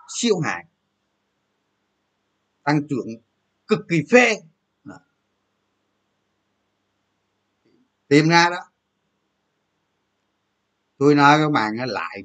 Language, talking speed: Vietnamese, 80 wpm